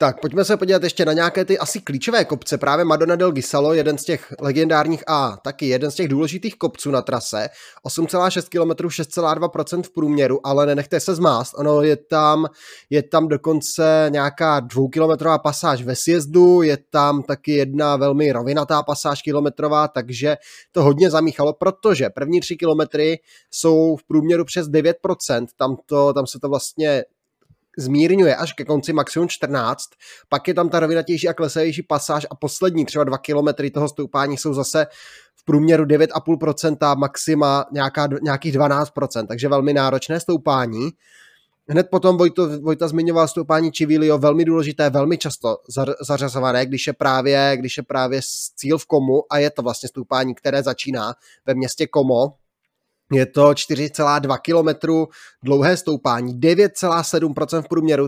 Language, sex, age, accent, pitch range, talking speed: Czech, male, 20-39, native, 140-160 Hz, 150 wpm